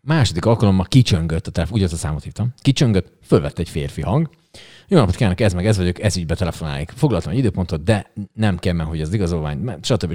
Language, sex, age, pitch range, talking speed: Hungarian, male, 30-49, 90-135 Hz, 225 wpm